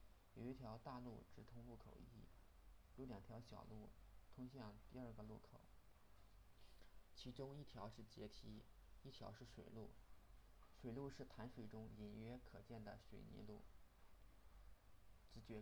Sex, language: male, Chinese